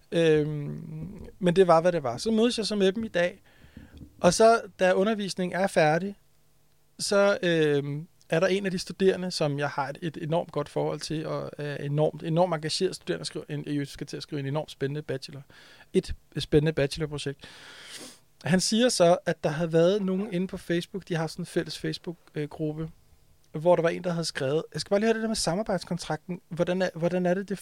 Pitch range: 155-200 Hz